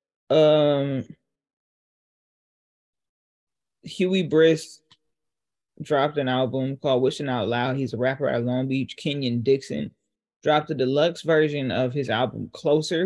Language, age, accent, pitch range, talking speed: English, 20-39, American, 135-175 Hz, 120 wpm